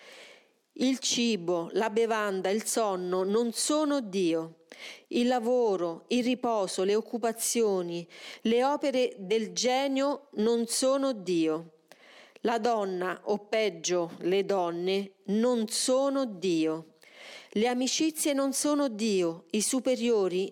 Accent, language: native, Italian